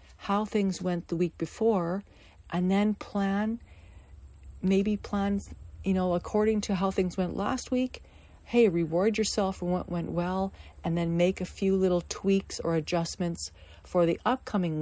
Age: 40-59